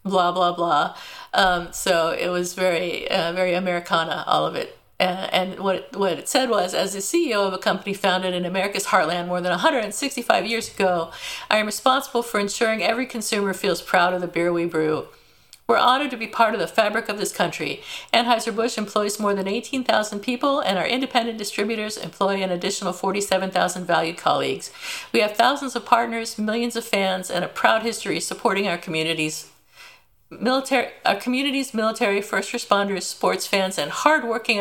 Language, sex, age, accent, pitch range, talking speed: English, female, 50-69, American, 180-235 Hz, 180 wpm